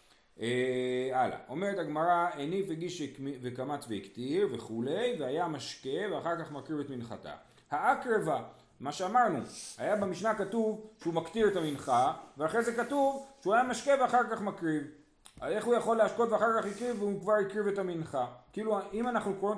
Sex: male